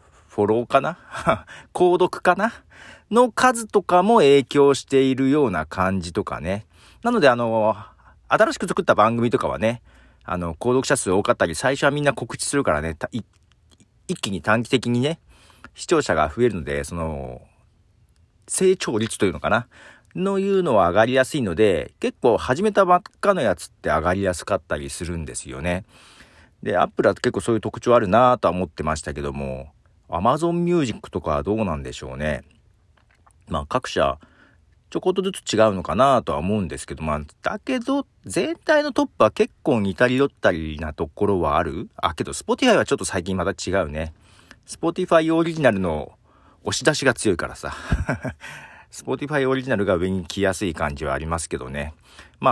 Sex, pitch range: male, 85-140 Hz